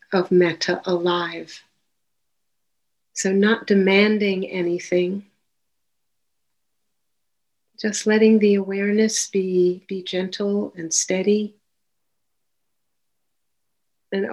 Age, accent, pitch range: 60-79, American, 185-215 Hz